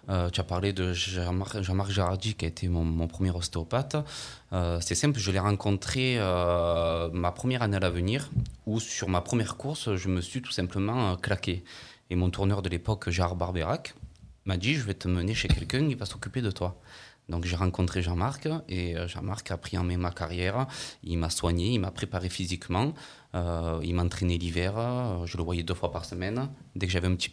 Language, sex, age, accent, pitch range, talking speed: French, male, 20-39, French, 85-105 Hz, 215 wpm